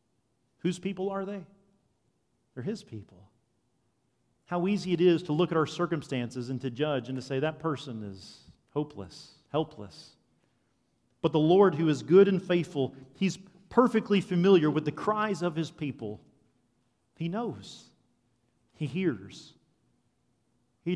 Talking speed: 140 wpm